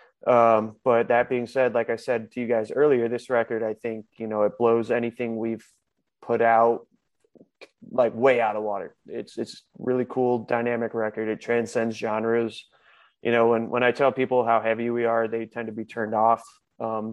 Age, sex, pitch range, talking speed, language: 20-39, male, 115-120 Hz, 200 wpm, English